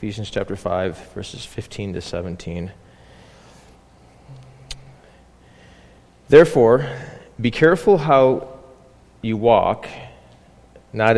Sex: male